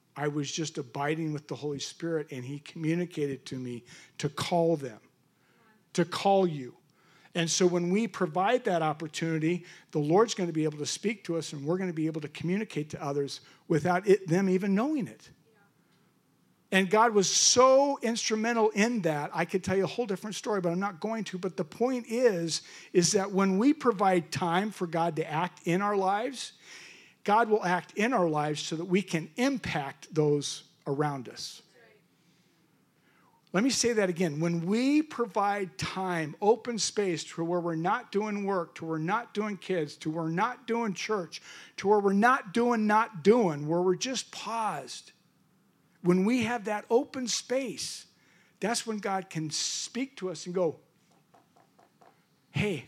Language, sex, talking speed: English, male, 180 wpm